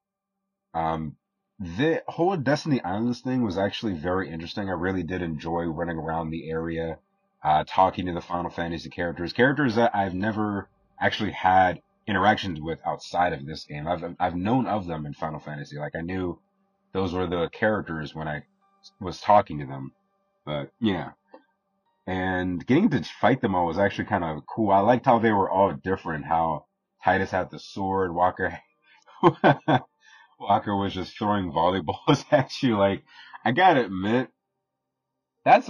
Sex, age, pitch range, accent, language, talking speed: male, 30-49, 85-130 Hz, American, English, 160 wpm